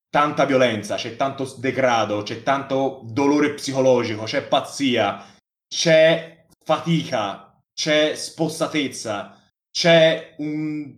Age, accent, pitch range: 20-39, native, 115-155 Hz